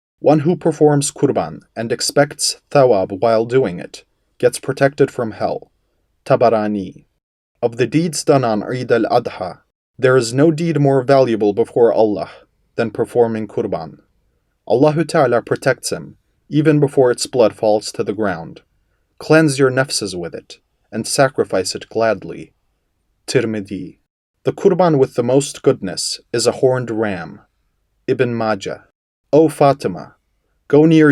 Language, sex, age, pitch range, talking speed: English, male, 30-49, 115-150 Hz, 135 wpm